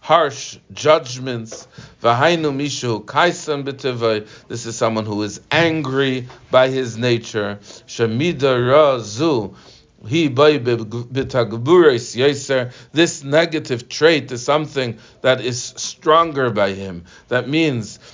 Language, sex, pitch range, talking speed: English, male, 115-150 Hz, 75 wpm